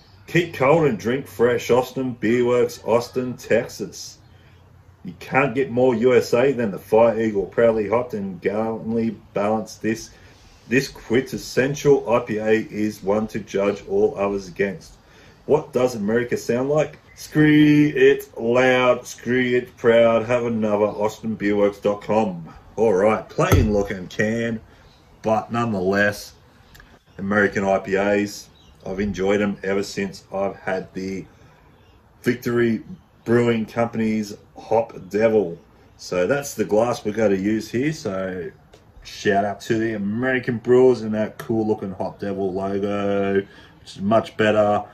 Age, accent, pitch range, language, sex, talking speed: 40-59, Australian, 95-120 Hz, English, male, 130 wpm